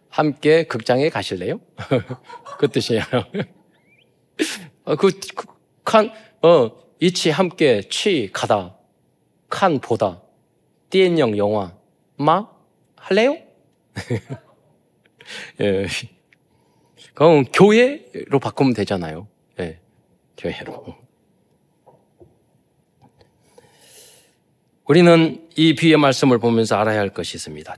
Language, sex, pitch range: Korean, male, 150-215 Hz